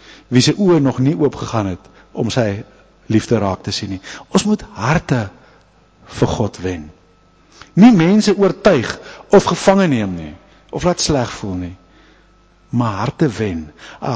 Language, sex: English, male